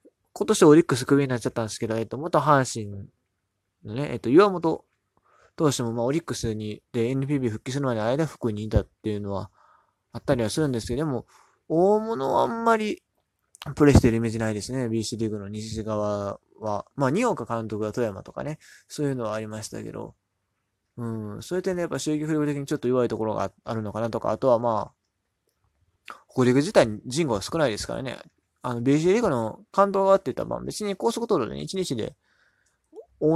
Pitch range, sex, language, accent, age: 110-155 Hz, male, Japanese, native, 20-39